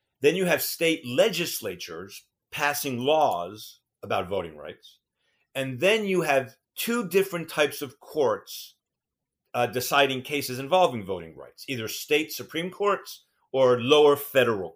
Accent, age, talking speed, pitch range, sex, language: American, 40-59, 130 wpm, 115-155 Hz, male, English